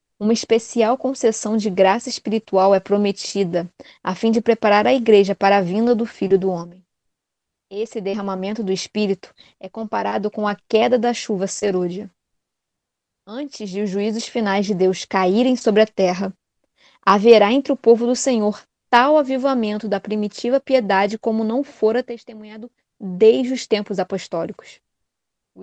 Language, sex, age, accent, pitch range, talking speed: Portuguese, female, 20-39, Brazilian, 195-235 Hz, 150 wpm